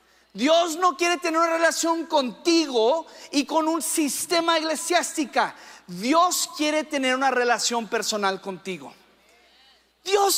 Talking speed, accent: 115 wpm, Mexican